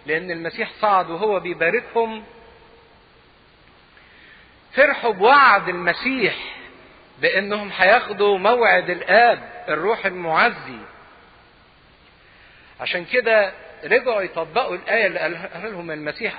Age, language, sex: 50-69, English, male